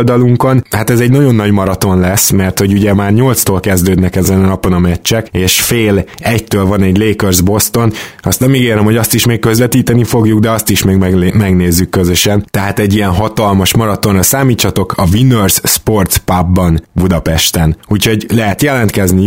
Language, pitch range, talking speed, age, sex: Hungarian, 95-110 Hz, 170 wpm, 20-39, male